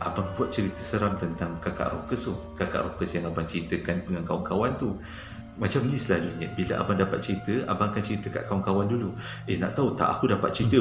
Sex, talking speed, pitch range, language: male, 205 wpm, 90-115 Hz, Malay